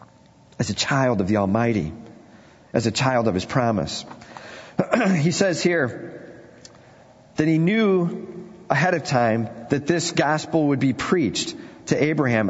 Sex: male